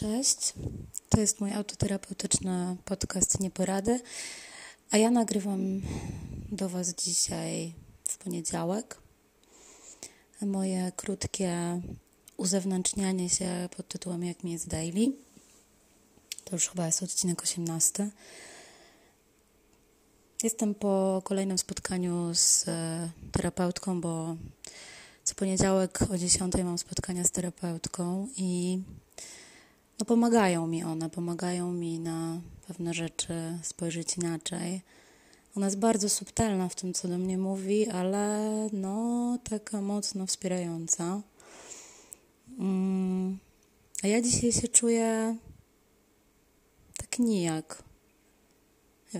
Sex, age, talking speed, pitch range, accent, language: female, 20-39, 100 wpm, 175-200 Hz, native, Polish